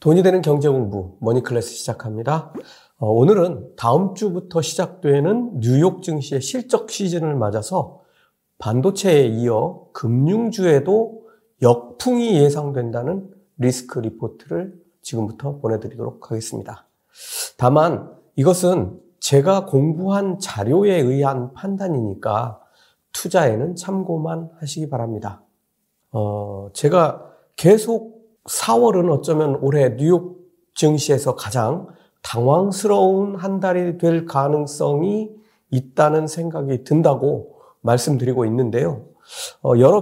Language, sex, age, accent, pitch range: Korean, male, 40-59, native, 125-185 Hz